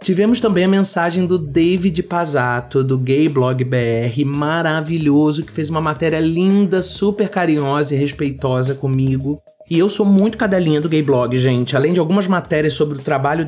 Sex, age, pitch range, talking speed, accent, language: male, 30-49, 140-175 Hz, 170 wpm, Brazilian, Portuguese